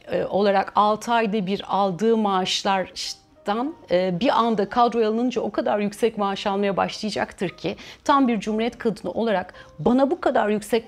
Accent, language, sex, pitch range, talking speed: native, Turkish, female, 195-255 Hz, 145 wpm